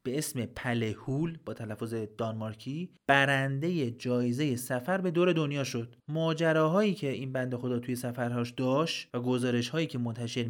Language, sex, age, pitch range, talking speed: Persian, male, 30-49, 115-145 Hz, 145 wpm